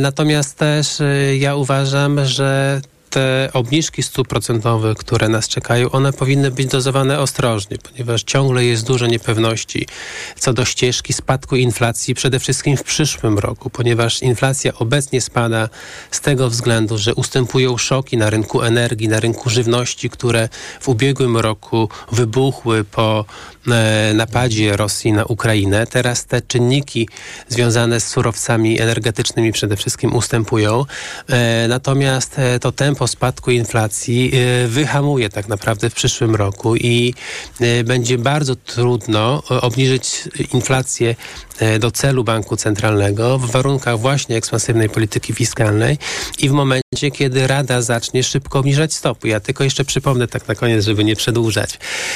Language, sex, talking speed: Polish, male, 130 wpm